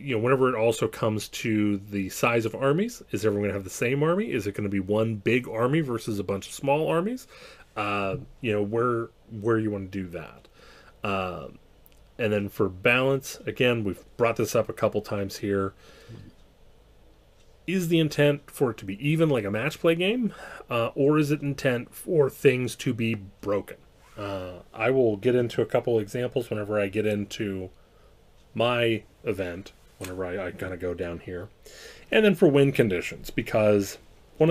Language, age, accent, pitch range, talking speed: English, 30-49, American, 100-130 Hz, 190 wpm